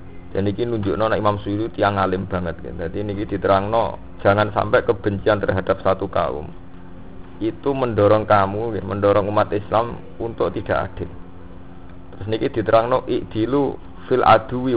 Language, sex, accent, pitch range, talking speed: Indonesian, male, native, 90-105 Hz, 130 wpm